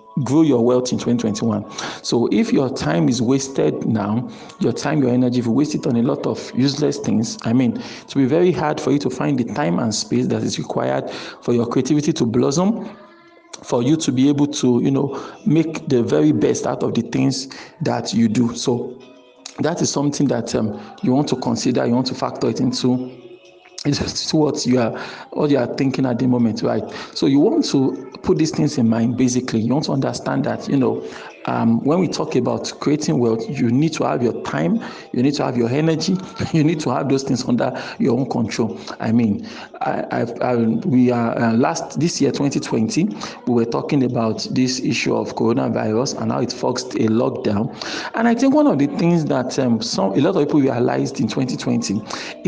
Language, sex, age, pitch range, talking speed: English, male, 50-69, 120-150 Hz, 210 wpm